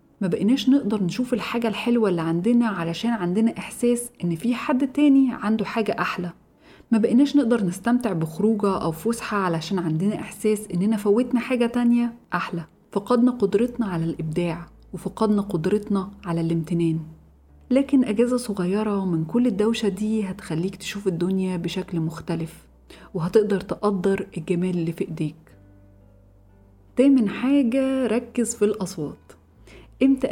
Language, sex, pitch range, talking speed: Arabic, female, 180-230 Hz, 130 wpm